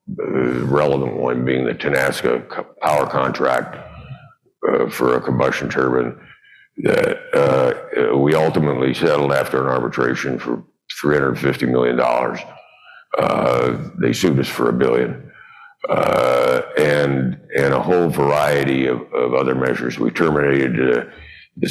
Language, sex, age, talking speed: English, male, 60-79, 125 wpm